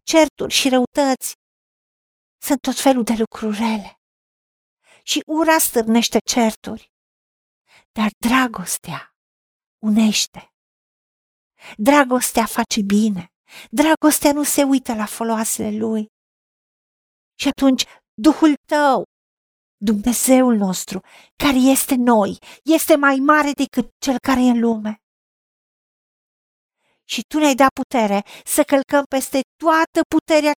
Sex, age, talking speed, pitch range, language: female, 50-69, 105 wpm, 210-275 Hz, Romanian